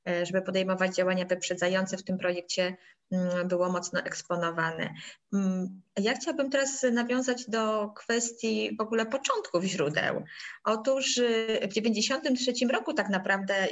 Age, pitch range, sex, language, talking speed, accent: 20-39, 180-225 Hz, female, Polish, 115 wpm, native